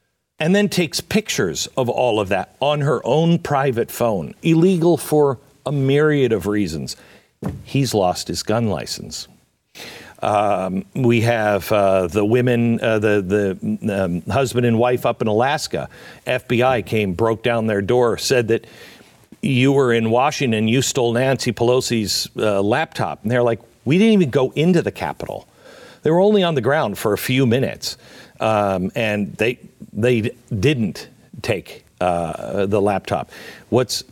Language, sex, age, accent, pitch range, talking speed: English, male, 50-69, American, 105-140 Hz, 155 wpm